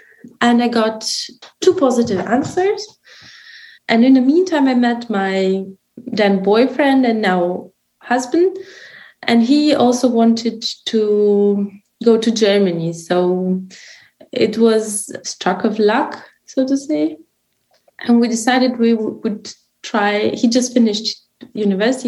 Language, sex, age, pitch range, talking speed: English, female, 20-39, 205-250 Hz, 125 wpm